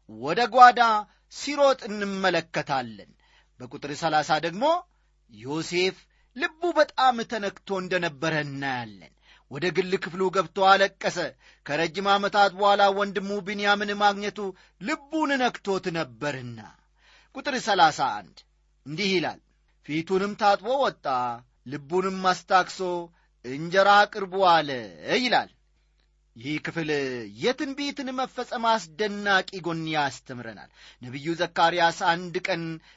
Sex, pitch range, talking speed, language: male, 165-230 Hz, 90 wpm, Amharic